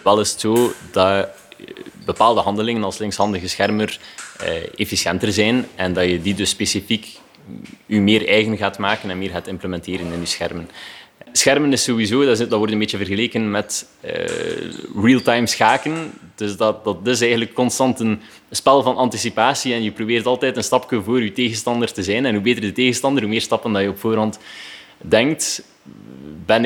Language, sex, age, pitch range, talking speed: Dutch, male, 20-39, 100-125 Hz, 180 wpm